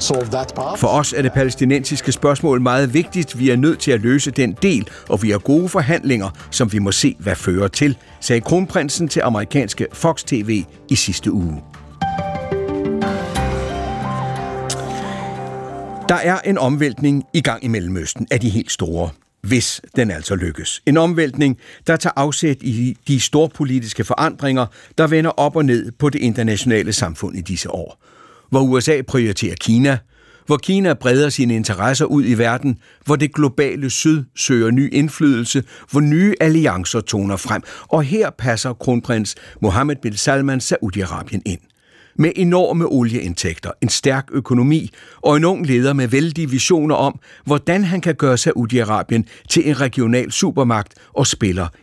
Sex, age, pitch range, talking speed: male, 60-79, 105-150 Hz, 155 wpm